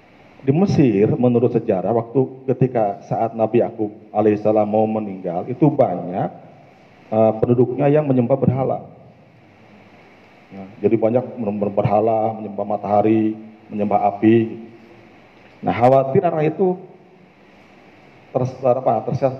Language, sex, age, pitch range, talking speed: Malay, male, 40-59, 110-145 Hz, 100 wpm